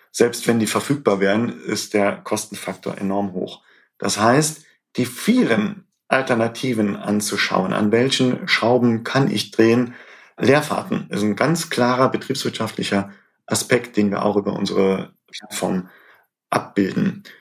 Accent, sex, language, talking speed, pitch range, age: German, male, German, 130 wpm, 100-125 Hz, 40-59